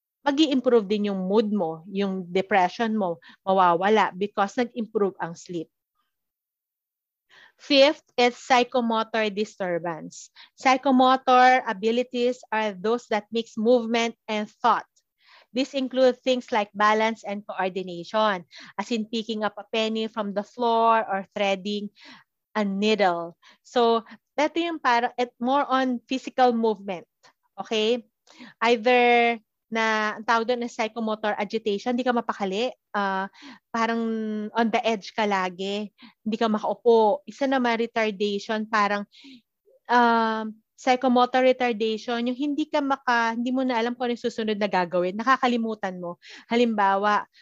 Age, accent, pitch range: 30-49, native, 205-245 Hz